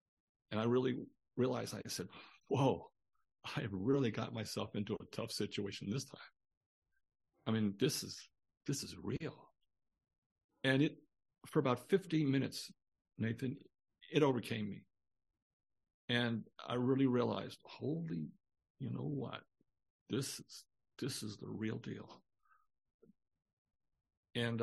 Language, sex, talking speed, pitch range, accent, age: English, male, 120 wpm, 125-210 Hz, American, 60-79